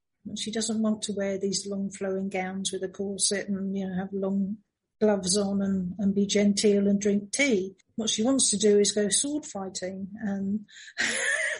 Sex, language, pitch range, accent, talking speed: female, English, 195-225 Hz, British, 185 wpm